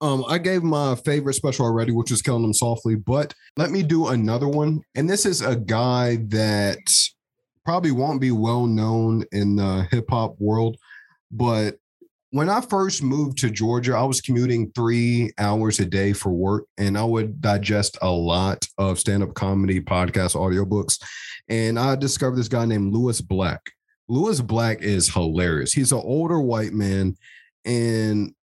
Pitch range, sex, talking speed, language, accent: 105-130 Hz, male, 165 wpm, English, American